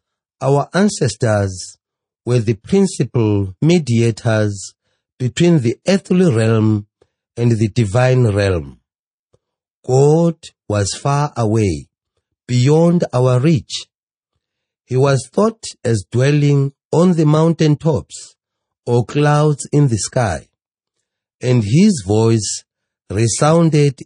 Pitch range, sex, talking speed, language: 110-150 Hz, male, 95 wpm, English